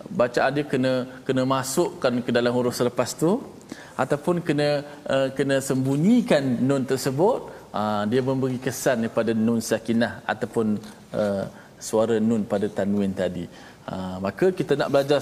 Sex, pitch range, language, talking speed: male, 110-135 Hz, Malayalam, 145 wpm